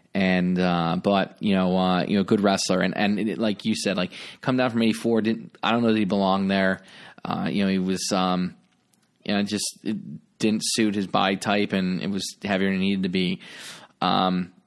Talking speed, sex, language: 230 wpm, male, English